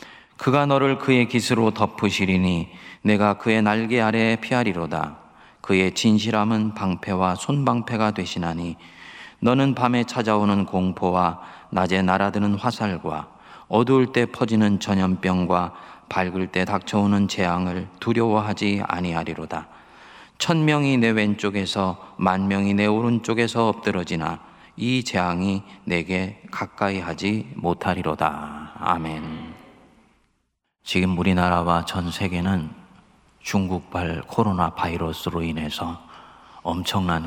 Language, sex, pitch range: Korean, male, 85-105 Hz